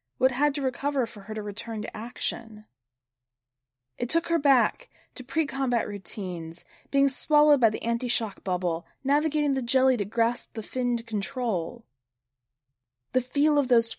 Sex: female